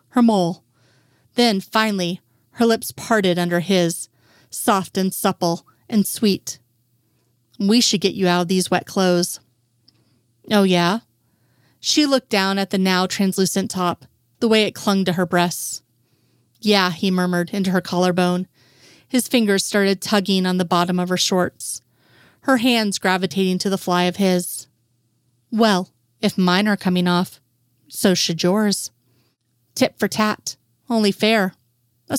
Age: 30-49